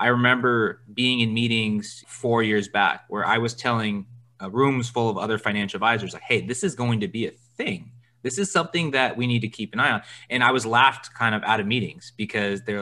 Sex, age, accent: male, 30-49, American